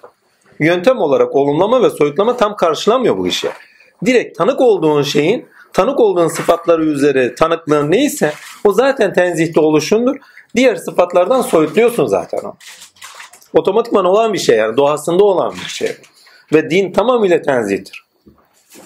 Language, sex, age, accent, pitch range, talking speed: Turkish, male, 40-59, native, 155-230 Hz, 130 wpm